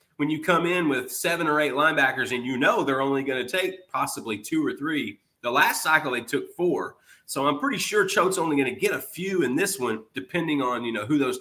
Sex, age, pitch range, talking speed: male, 30-49, 130-170 Hz, 245 wpm